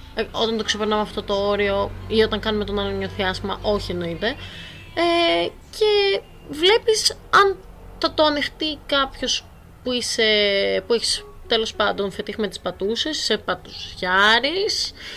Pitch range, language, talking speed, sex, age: 205-295 Hz, Greek, 130 wpm, female, 20-39